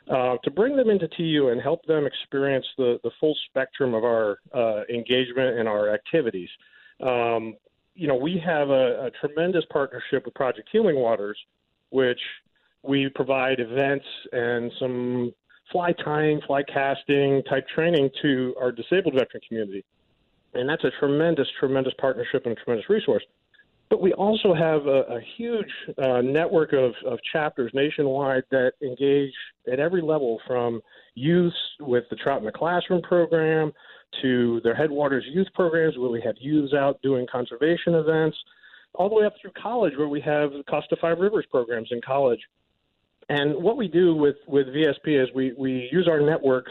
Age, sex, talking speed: 40-59, male, 165 wpm